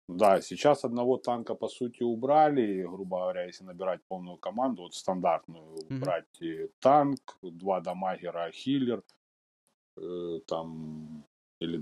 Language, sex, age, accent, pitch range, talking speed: Russian, male, 30-49, native, 90-120 Hz, 110 wpm